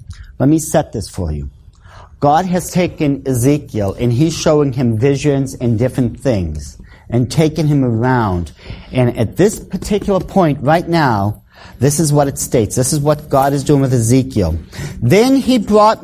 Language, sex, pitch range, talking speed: English, male, 110-180 Hz, 170 wpm